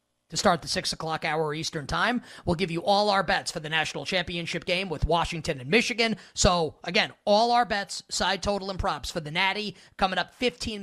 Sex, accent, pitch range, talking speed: male, American, 155-200 Hz, 210 wpm